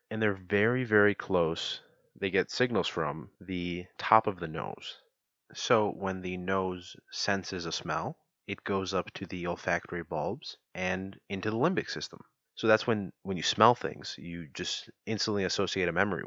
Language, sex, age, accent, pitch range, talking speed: English, male, 30-49, American, 90-105 Hz, 170 wpm